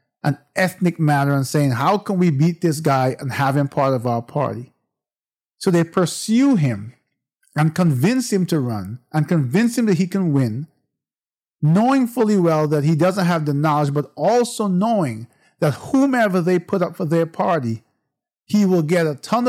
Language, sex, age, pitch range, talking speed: English, male, 50-69, 140-180 Hz, 180 wpm